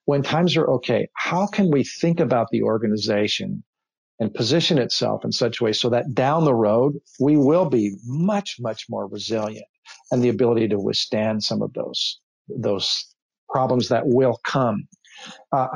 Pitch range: 110-155 Hz